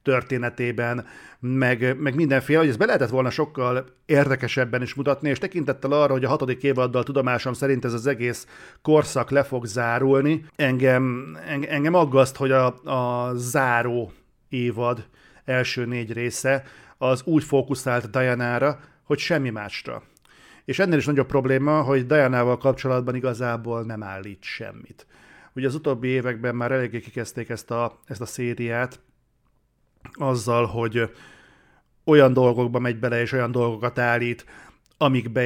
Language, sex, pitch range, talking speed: Hungarian, male, 120-135 Hz, 140 wpm